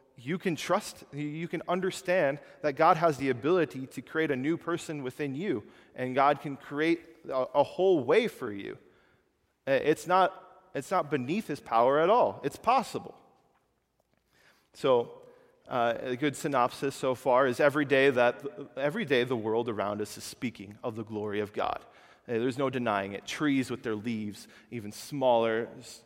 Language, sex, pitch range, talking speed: English, male, 115-155 Hz, 170 wpm